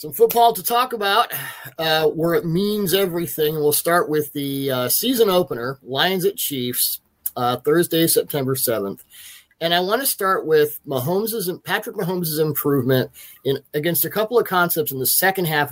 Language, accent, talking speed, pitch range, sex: English, American, 170 wpm, 140-180 Hz, male